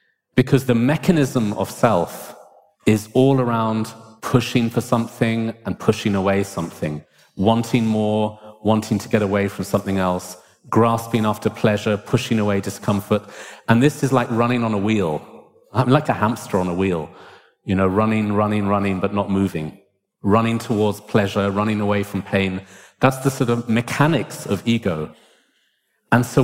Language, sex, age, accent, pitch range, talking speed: English, male, 30-49, British, 100-120 Hz, 155 wpm